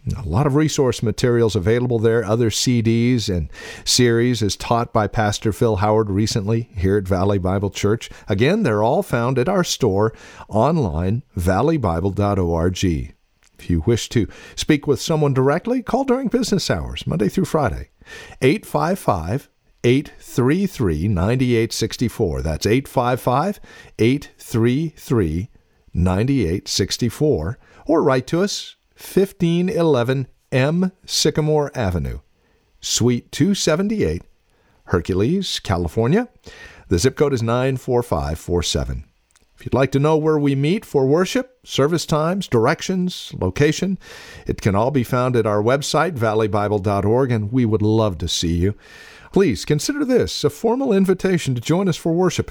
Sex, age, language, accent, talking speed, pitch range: male, 50-69, English, American, 125 wpm, 100-150 Hz